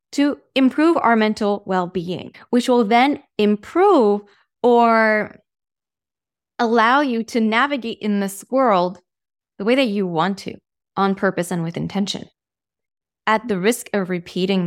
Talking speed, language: 135 wpm, English